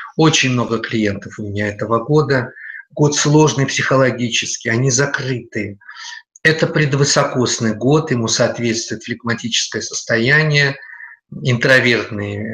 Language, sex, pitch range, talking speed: Russian, male, 125-150 Hz, 95 wpm